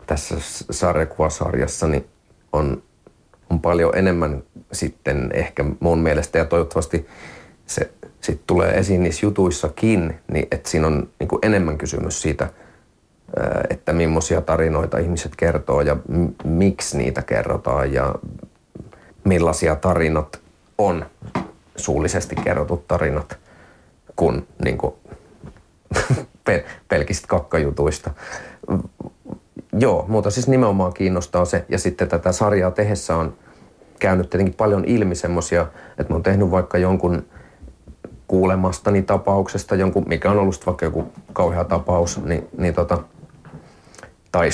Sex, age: male, 30-49